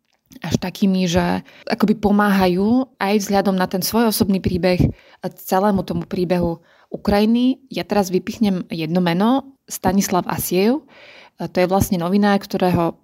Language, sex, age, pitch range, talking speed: Slovak, female, 20-39, 185-215 Hz, 130 wpm